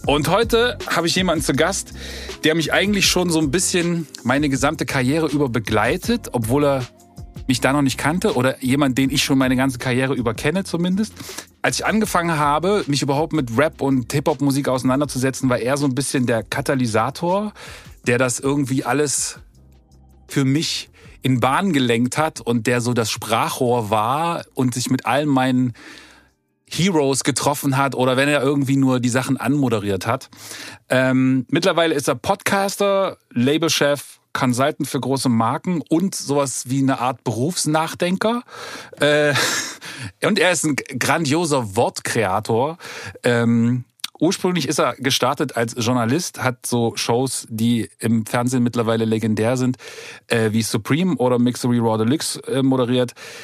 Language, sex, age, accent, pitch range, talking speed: German, male, 40-59, German, 125-155 Hz, 150 wpm